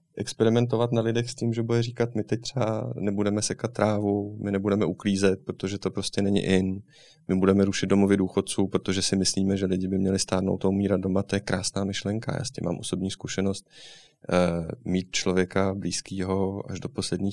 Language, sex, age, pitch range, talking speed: Czech, male, 30-49, 95-115 Hz, 185 wpm